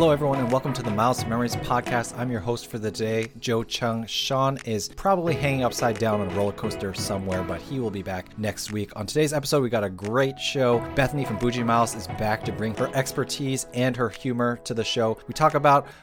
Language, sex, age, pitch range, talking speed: English, male, 30-49, 110-135 Hz, 235 wpm